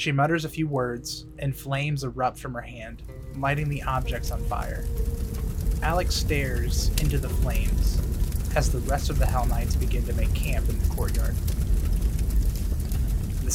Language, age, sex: English, 30-49, male